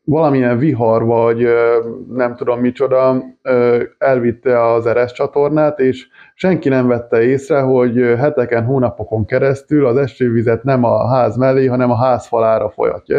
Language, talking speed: Hungarian, 130 wpm